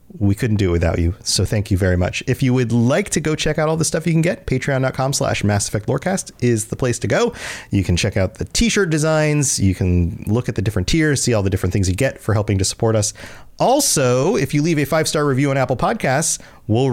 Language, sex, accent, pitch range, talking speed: English, male, American, 115-190 Hz, 255 wpm